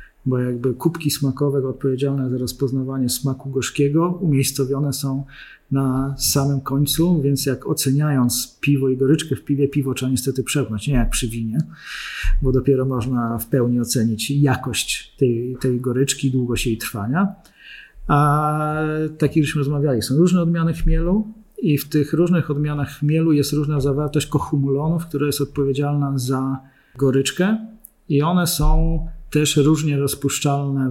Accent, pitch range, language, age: native, 135-155 Hz, Polish, 40-59